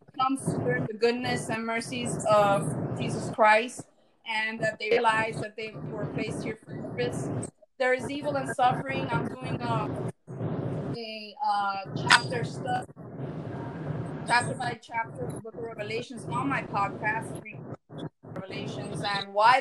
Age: 20-39